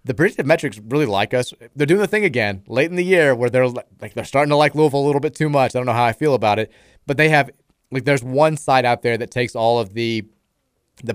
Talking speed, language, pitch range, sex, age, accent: 275 wpm, English, 110-135 Hz, male, 30-49, American